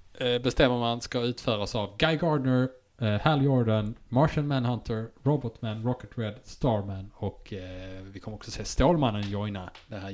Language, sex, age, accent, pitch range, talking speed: English, male, 20-39, Norwegian, 105-130 Hz, 140 wpm